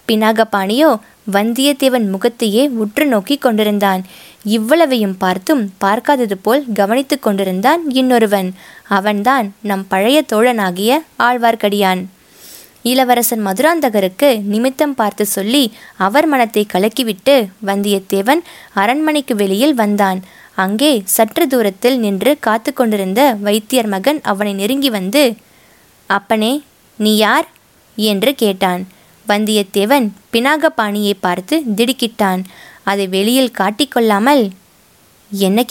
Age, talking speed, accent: 20-39, 95 wpm, native